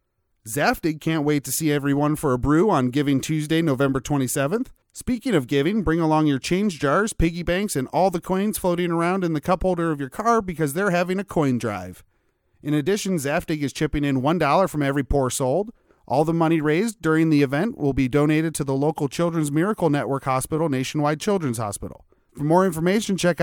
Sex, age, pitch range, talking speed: male, 30-49, 145-180 Hz, 200 wpm